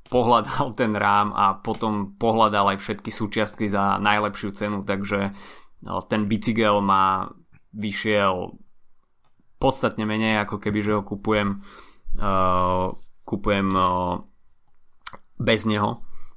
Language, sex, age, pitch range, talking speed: Slovak, male, 20-39, 95-110 Hz, 105 wpm